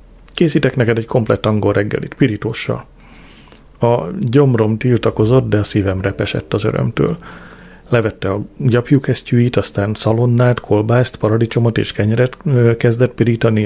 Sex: male